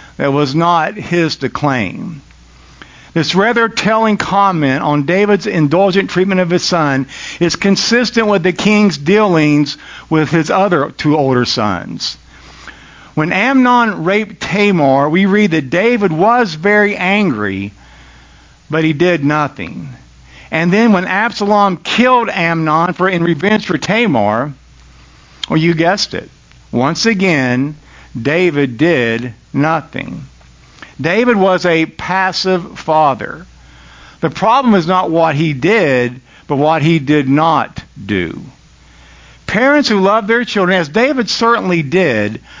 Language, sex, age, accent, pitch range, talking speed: English, male, 50-69, American, 140-200 Hz, 130 wpm